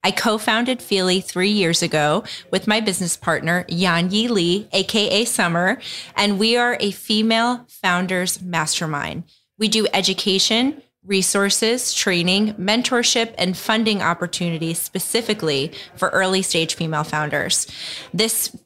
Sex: female